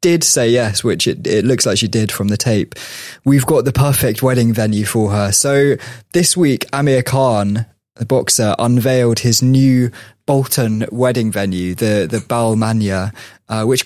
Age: 20-39